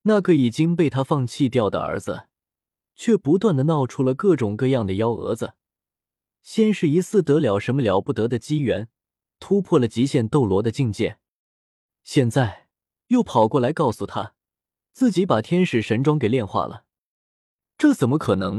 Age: 20-39